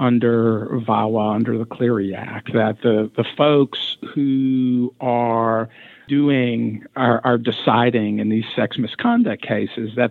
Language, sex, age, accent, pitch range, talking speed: English, male, 50-69, American, 110-130 Hz, 130 wpm